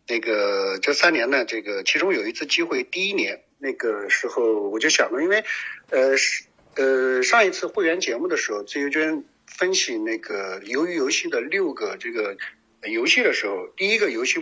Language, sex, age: Chinese, male, 50-69